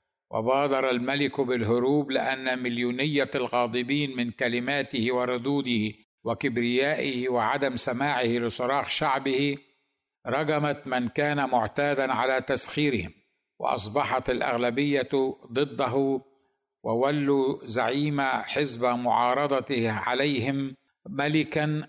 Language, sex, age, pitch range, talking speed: Arabic, male, 60-79, 125-140 Hz, 80 wpm